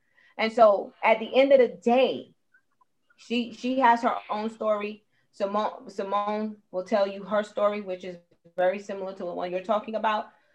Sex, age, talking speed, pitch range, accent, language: female, 30-49, 175 wpm, 210-270 Hz, American, English